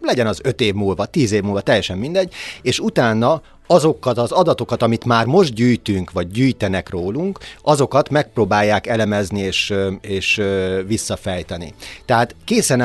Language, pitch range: Hungarian, 105-125 Hz